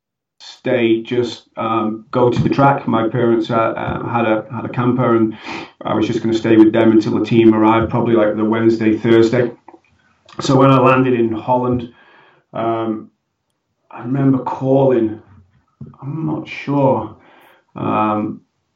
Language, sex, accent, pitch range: English, male, British, 110-125 Hz